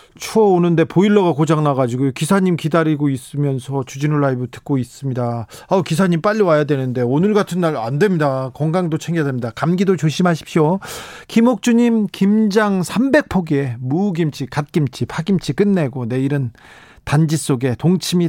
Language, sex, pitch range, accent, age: Korean, male, 130-180 Hz, native, 40-59